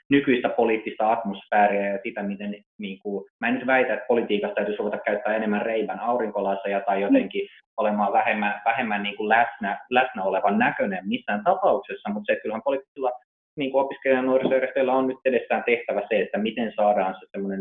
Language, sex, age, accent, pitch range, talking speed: Finnish, male, 30-49, native, 105-135 Hz, 165 wpm